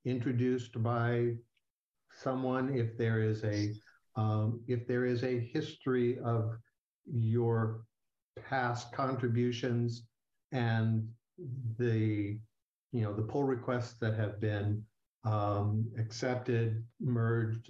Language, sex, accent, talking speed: English, male, American, 100 wpm